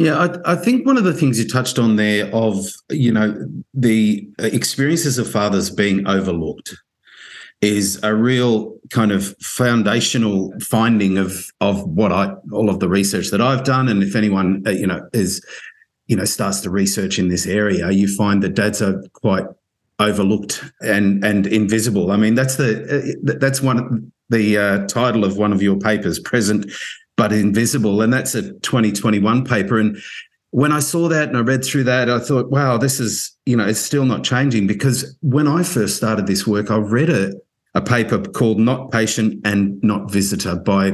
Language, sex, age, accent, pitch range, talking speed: English, male, 50-69, Australian, 100-125 Hz, 185 wpm